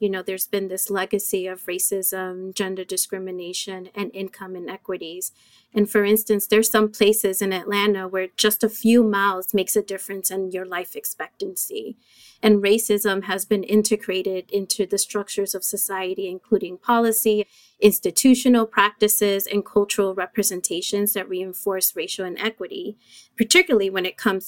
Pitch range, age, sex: 185-210 Hz, 30-49, female